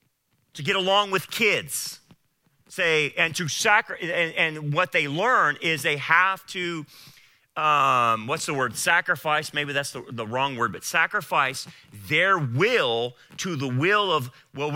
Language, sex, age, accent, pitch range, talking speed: English, male, 40-59, American, 145-205 Hz, 155 wpm